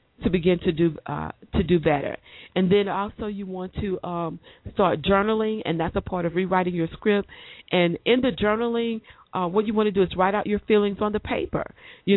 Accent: American